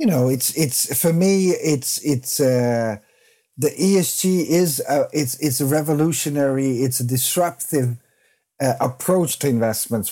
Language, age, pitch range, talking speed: English, 50-69, 120-150 Hz, 140 wpm